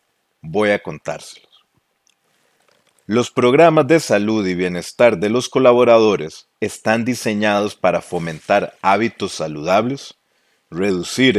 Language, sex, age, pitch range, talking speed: Spanish, male, 40-59, 95-125 Hz, 100 wpm